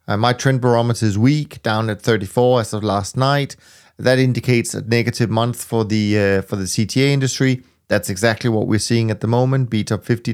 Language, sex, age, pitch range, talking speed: English, male, 30-49, 105-125 Hz, 205 wpm